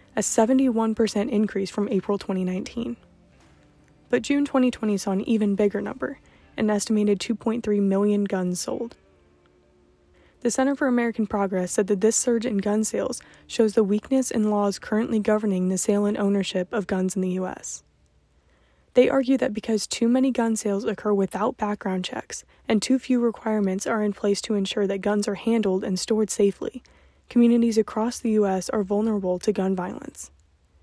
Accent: American